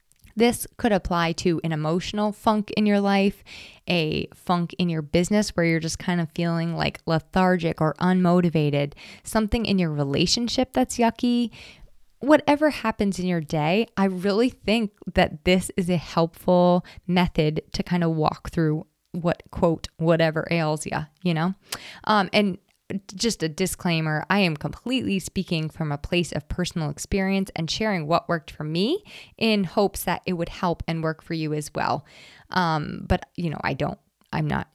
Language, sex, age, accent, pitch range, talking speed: English, female, 20-39, American, 160-195 Hz, 170 wpm